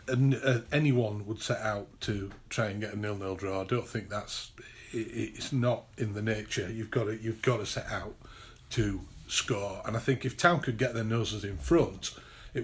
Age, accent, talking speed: 40-59, British, 205 wpm